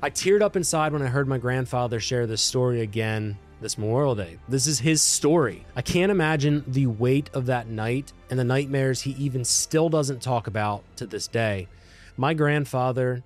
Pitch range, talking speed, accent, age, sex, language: 120-150 Hz, 190 wpm, American, 20-39, male, English